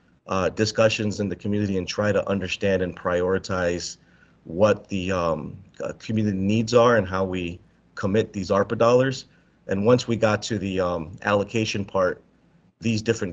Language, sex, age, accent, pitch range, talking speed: English, male, 30-49, American, 95-105 Hz, 160 wpm